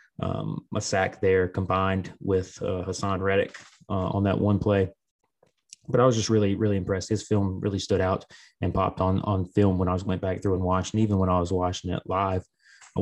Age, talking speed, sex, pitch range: 20-39, 220 wpm, male, 95-100 Hz